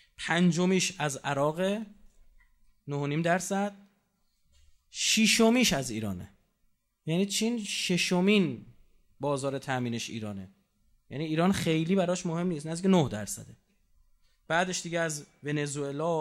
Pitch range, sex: 145-195 Hz, male